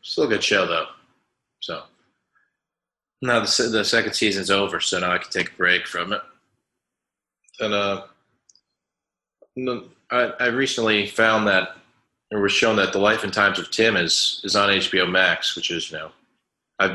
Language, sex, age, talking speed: English, male, 20-39, 170 wpm